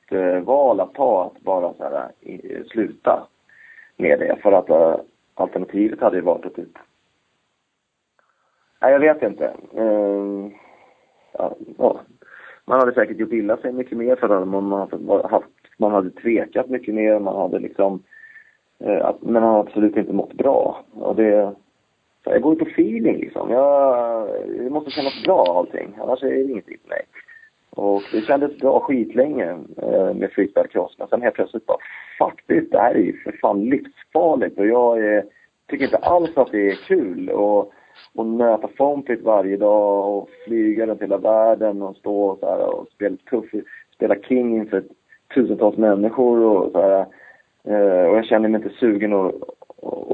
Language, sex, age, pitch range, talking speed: Swedish, male, 30-49, 100-150 Hz, 160 wpm